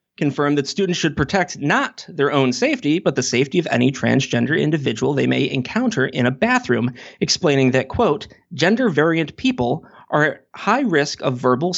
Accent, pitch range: American, 130-205 Hz